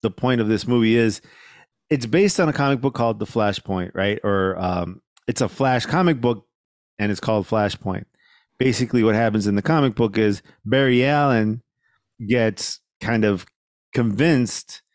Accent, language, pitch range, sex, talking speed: American, English, 110-140 Hz, male, 165 wpm